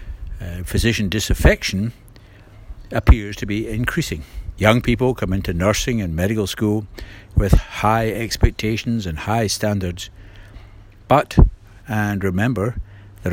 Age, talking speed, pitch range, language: 60-79, 115 wpm, 90-110 Hz, English